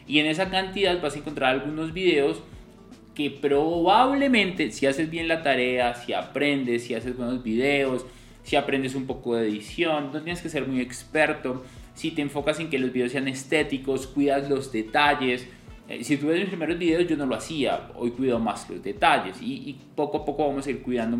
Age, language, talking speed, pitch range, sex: 20-39, Spanish, 195 wpm, 120-160 Hz, male